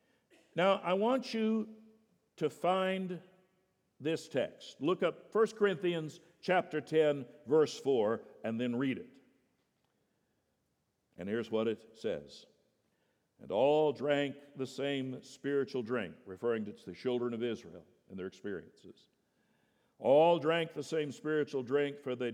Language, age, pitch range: English, 60-79, 130-185 Hz